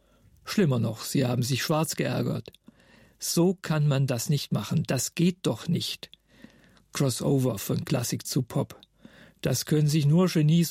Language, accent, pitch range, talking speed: German, German, 140-175 Hz, 150 wpm